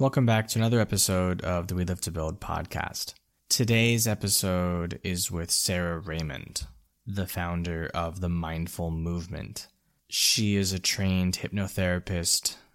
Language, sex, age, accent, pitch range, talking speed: English, male, 20-39, American, 80-95 Hz, 135 wpm